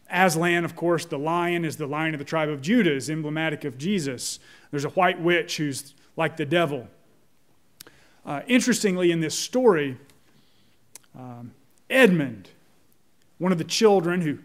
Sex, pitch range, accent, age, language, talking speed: male, 145-175 Hz, American, 30-49, English, 155 wpm